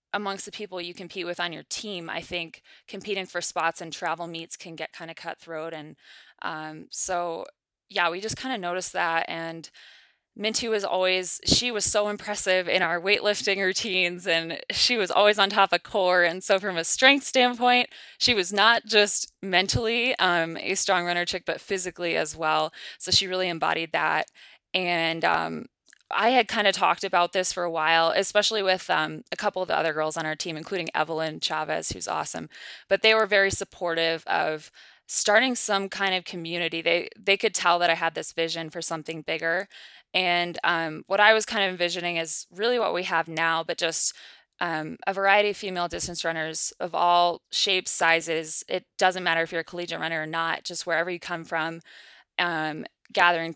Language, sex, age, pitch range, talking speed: English, female, 20-39, 165-195 Hz, 195 wpm